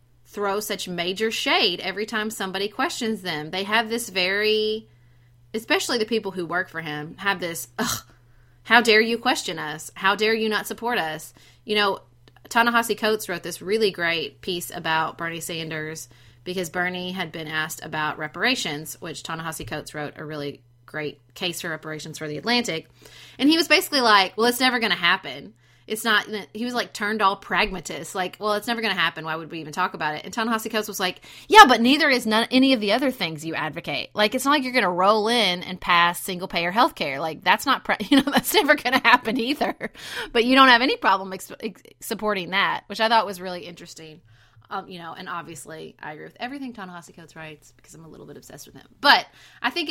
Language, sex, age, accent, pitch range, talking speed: English, female, 30-49, American, 160-225 Hz, 220 wpm